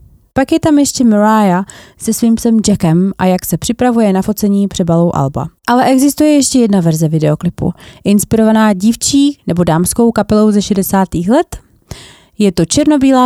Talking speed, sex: 155 wpm, female